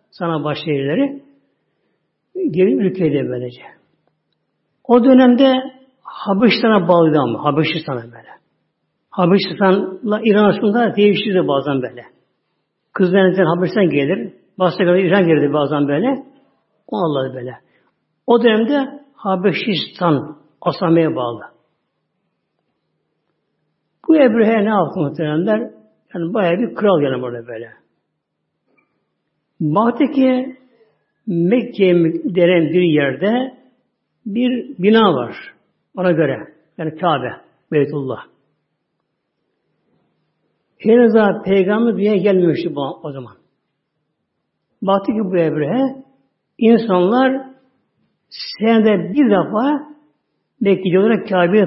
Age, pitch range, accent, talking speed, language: 60-79, 160-225 Hz, native, 90 wpm, Turkish